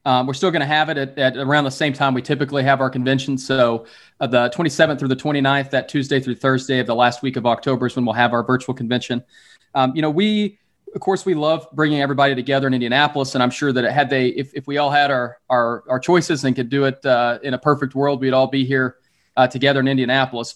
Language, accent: English, American